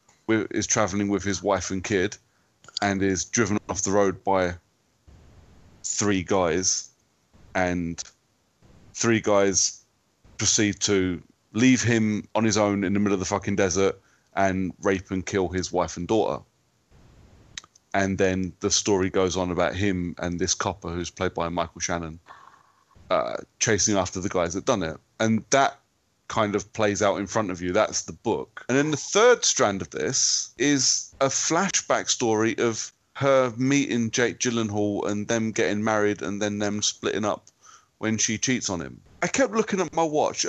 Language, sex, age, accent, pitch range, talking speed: English, male, 30-49, British, 95-115 Hz, 170 wpm